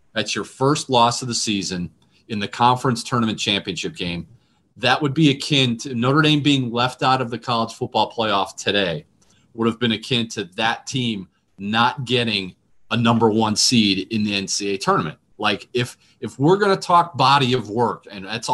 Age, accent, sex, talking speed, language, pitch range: 30-49, American, male, 185 wpm, English, 105-130 Hz